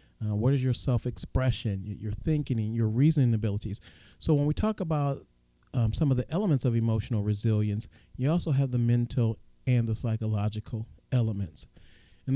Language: English